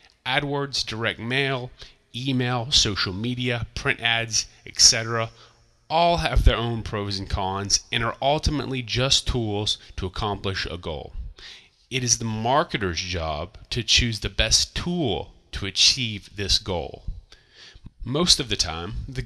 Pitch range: 100-130 Hz